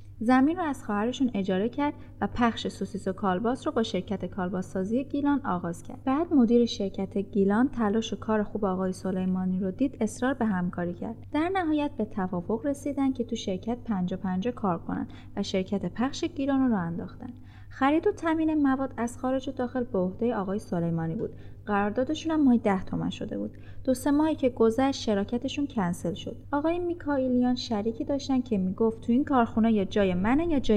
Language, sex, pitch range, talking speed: Persian, female, 195-260 Hz, 185 wpm